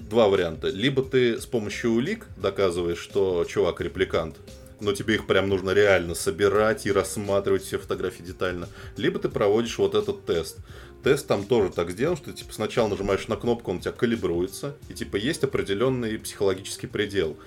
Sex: male